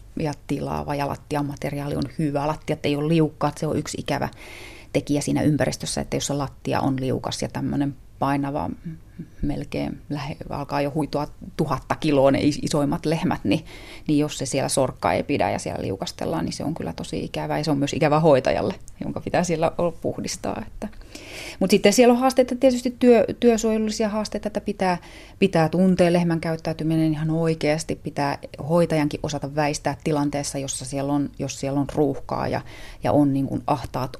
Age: 30-49